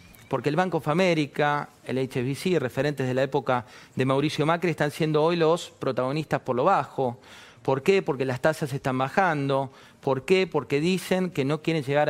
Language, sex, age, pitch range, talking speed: Spanish, male, 40-59, 120-165 Hz, 185 wpm